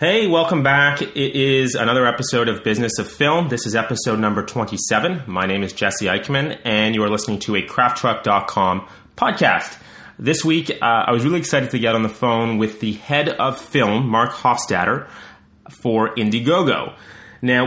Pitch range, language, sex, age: 100-125 Hz, English, male, 30-49